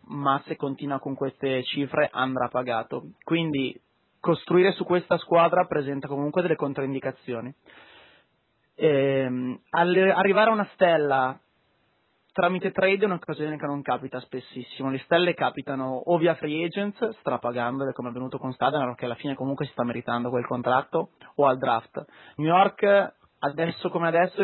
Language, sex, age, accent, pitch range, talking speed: Italian, male, 20-39, native, 130-160 Hz, 150 wpm